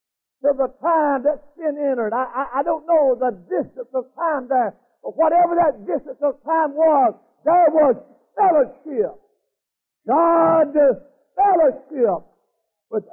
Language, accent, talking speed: English, American, 135 wpm